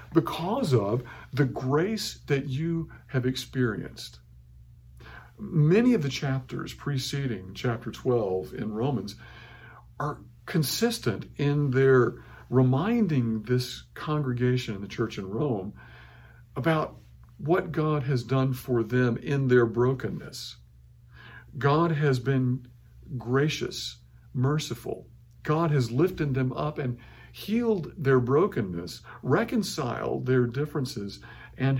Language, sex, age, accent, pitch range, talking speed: English, male, 50-69, American, 115-140 Hz, 110 wpm